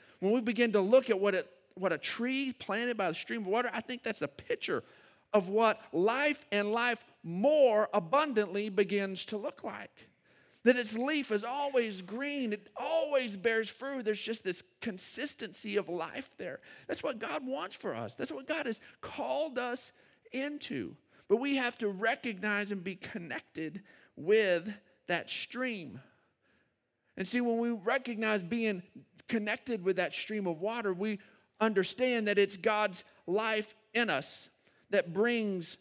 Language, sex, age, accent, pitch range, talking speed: English, male, 50-69, American, 200-255 Hz, 160 wpm